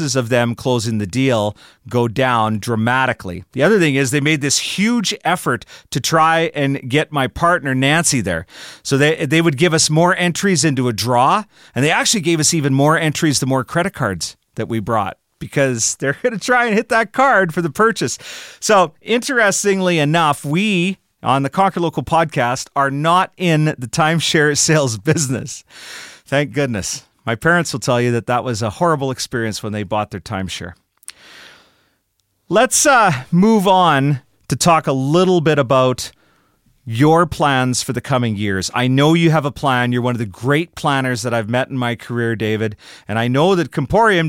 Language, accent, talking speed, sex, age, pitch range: English, American, 185 wpm, male, 40-59, 125-165 Hz